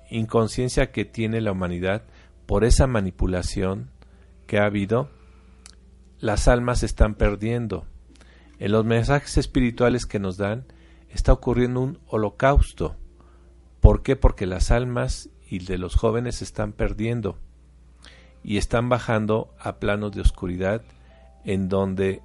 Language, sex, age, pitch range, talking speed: Spanish, male, 50-69, 75-115 Hz, 125 wpm